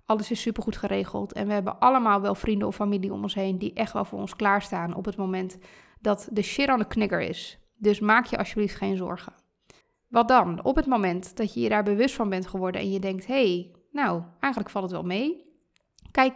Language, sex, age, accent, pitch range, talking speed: Dutch, female, 20-39, Dutch, 195-230 Hz, 230 wpm